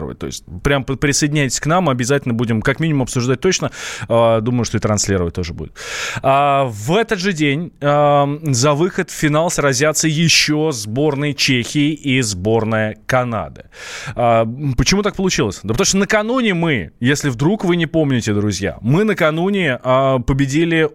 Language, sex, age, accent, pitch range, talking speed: Russian, male, 20-39, native, 125-165 Hz, 145 wpm